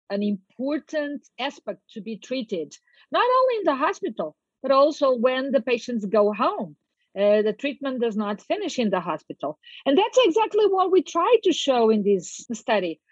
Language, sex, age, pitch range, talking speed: English, female, 50-69, 205-275 Hz, 175 wpm